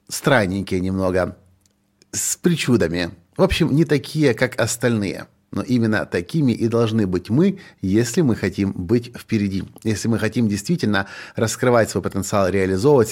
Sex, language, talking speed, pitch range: male, Russian, 135 wpm, 100-125 Hz